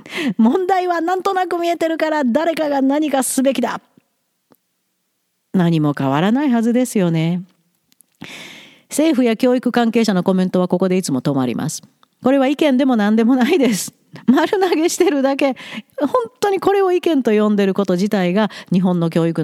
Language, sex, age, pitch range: Japanese, female, 40-59, 170-255 Hz